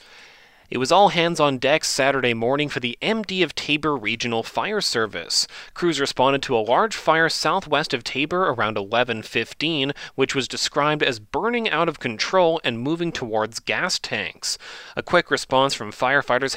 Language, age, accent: English, 30-49, American